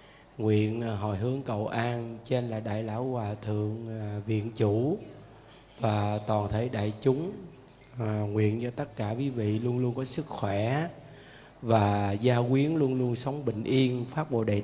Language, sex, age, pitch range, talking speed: Vietnamese, male, 20-39, 110-130 Hz, 165 wpm